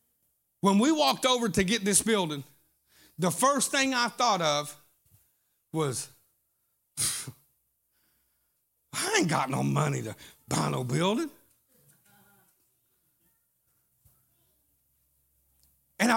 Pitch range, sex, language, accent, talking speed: 185-250 Hz, male, English, American, 95 wpm